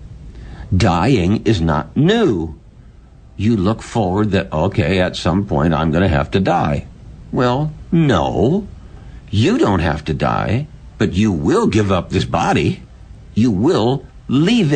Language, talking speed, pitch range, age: English, 140 wpm, 85-115 Hz, 60-79